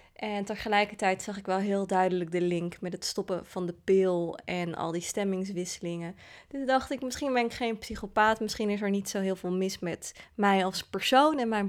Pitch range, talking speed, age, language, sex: 185-215 Hz, 210 wpm, 20-39, Dutch, female